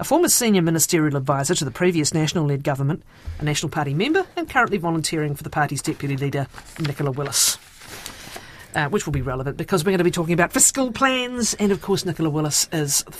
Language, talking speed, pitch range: English, 205 wpm, 145-205 Hz